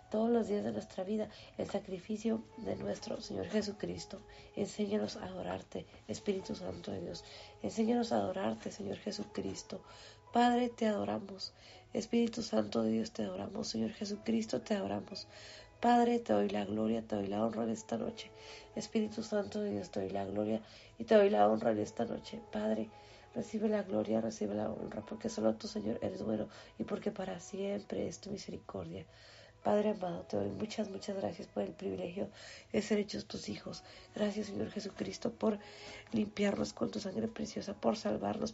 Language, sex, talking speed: Spanish, female, 175 wpm